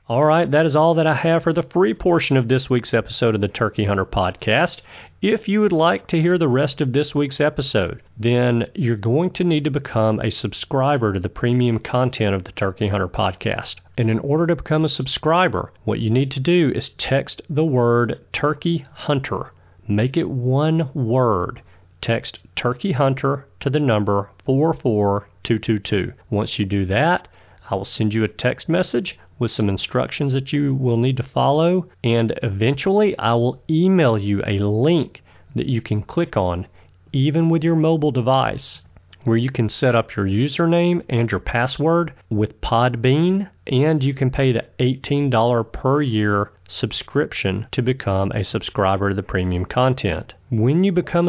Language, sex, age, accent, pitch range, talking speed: English, male, 40-59, American, 110-150 Hz, 175 wpm